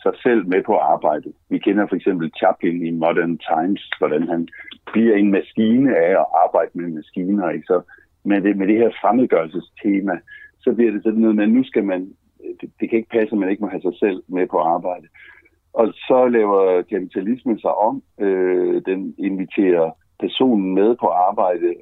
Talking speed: 175 wpm